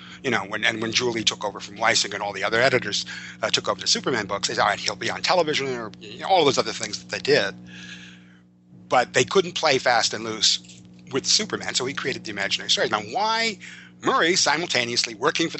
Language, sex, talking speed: English, male, 230 wpm